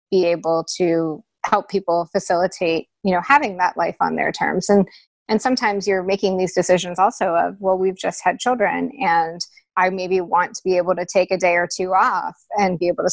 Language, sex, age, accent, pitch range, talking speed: English, female, 20-39, American, 170-195 Hz, 205 wpm